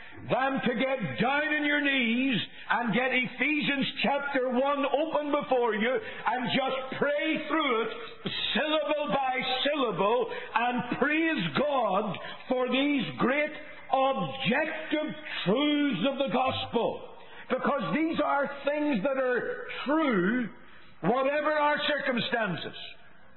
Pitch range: 180-285 Hz